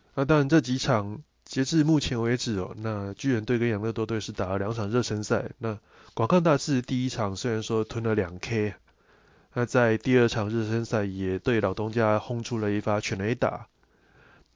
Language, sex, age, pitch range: Chinese, male, 20-39, 105-125 Hz